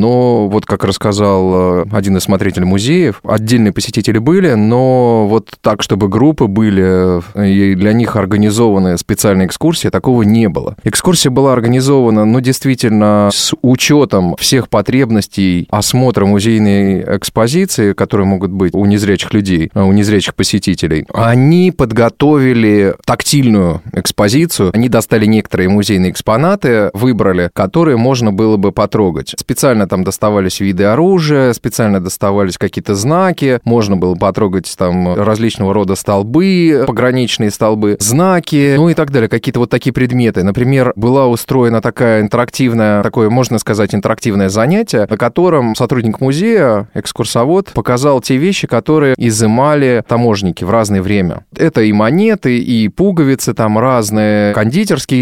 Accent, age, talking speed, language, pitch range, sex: native, 20-39, 135 wpm, Russian, 100-130 Hz, male